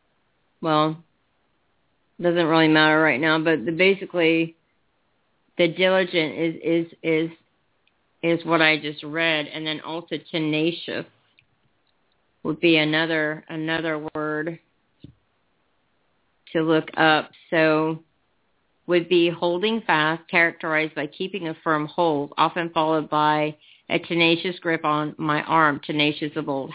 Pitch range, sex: 155-180 Hz, female